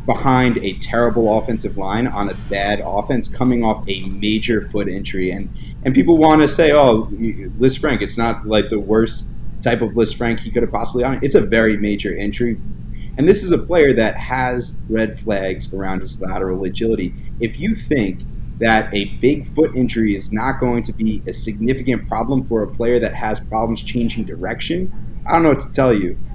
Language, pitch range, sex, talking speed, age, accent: English, 105-135 Hz, male, 200 wpm, 30-49, American